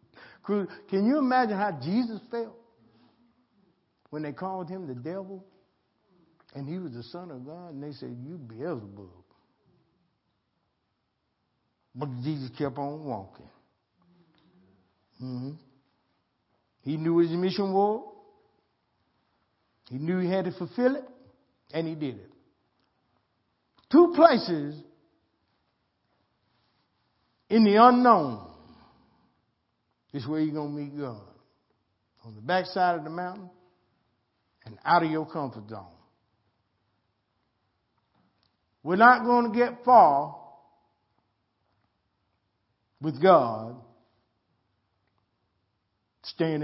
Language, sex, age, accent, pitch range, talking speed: English, male, 60-79, American, 110-185 Hz, 105 wpm